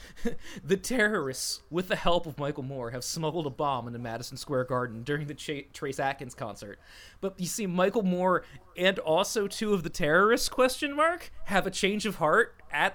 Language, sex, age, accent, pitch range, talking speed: English, male, 20-39, American, 130-185 Hz, 190 wpm